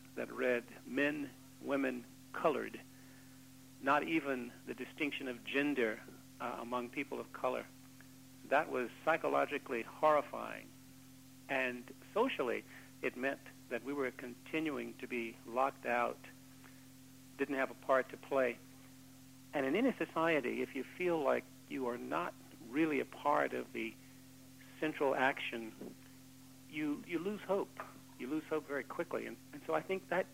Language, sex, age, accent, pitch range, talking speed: English, male, 60-79, American, 130-140 Hz, 140 wpm